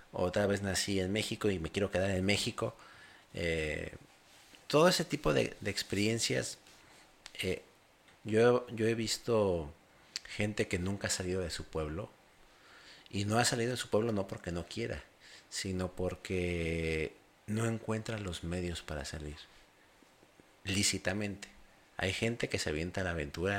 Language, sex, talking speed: Spanish, male, 150 wpm